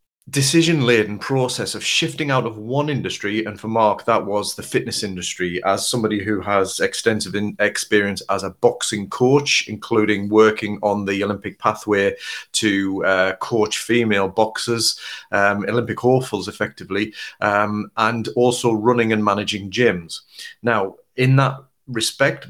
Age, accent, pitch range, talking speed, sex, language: 30-49, British, 100-125 Hz, 140 wpm, male, English